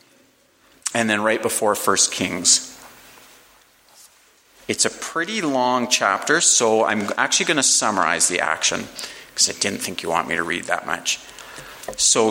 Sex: male